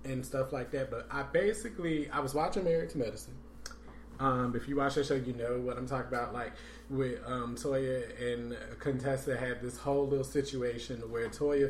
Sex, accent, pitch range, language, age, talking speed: male, American, 120-145 Hz, English, 20-39, 195 wpm